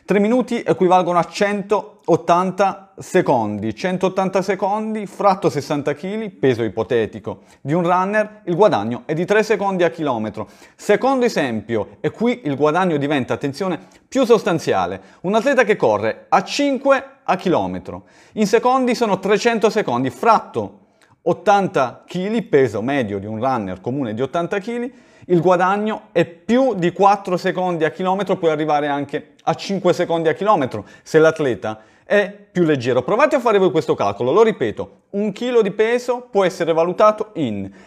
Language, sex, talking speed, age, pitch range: Italian, male, 155 wpm, 40-59, 155-220 Hz